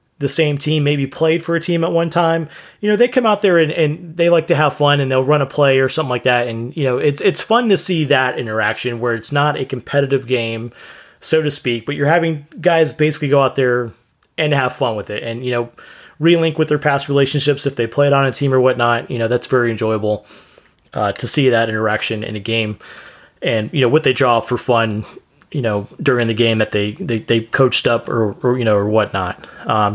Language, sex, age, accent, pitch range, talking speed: English, male, 20-39, American, 115-155 Hz, 240 wpm